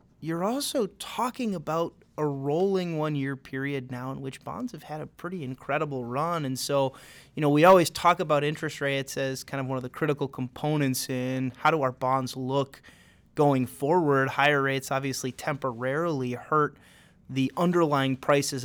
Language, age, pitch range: English, 30-49, 130-150 Hz